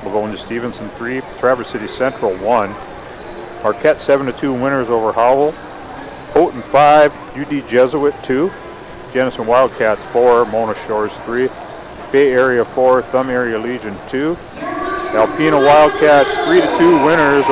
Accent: American